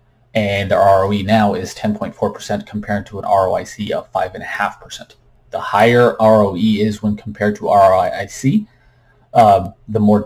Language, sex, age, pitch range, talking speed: English, male, 30-49, 105-125 Hz, 135 wpm